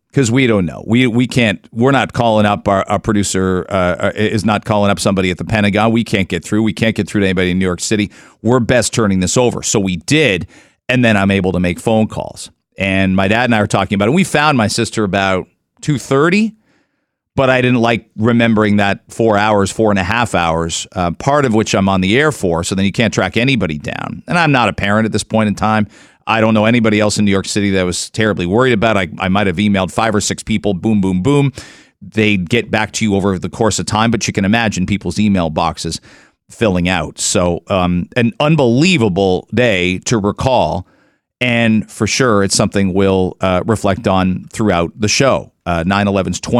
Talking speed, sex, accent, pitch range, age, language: 225 wpm, male, American, 95-120 Hz, 40-59, English